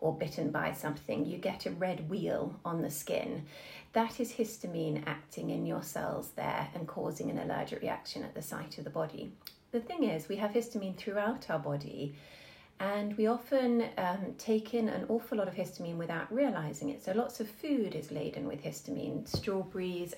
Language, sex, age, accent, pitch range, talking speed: English, female, 30-49, British, 160-220 Hz, 185 wpm